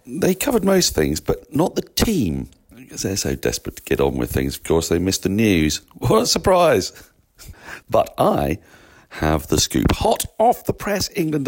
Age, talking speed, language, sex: 50-69, 190 wpm, English, male